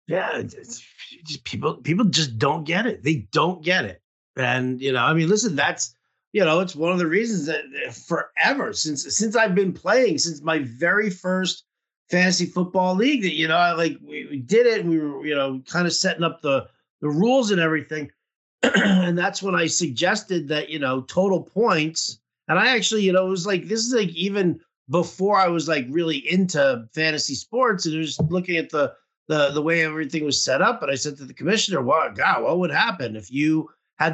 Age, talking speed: 50-69, 215 wpm